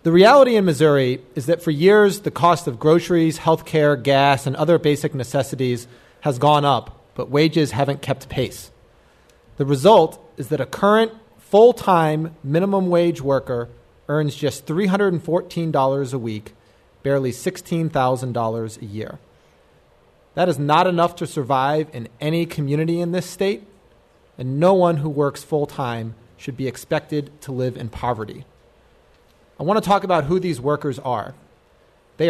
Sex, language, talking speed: male, English, 150 wpm